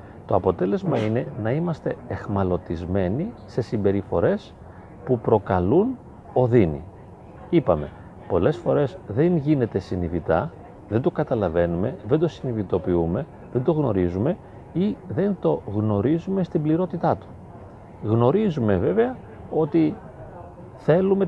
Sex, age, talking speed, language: male, 40-59, 105 wpm, Greek